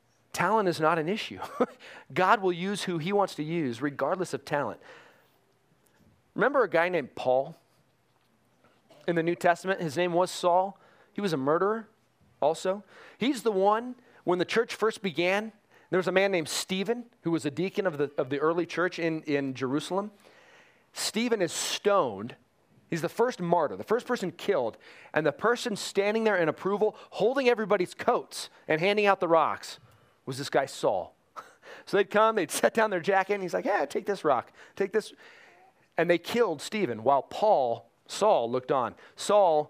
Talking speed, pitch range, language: 180 wpm, 155-210 Hz, English